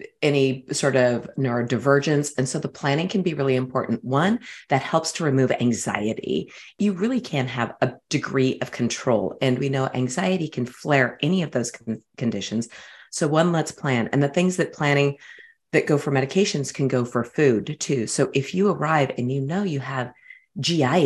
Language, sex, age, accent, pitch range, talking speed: English, female, 30-49, American, 125-165 Hz, 180 wpm